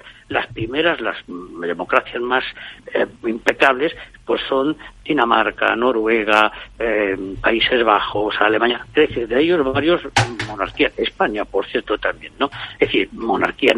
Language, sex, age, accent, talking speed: Spanish, male, 60-79, Spanish, 120 wpm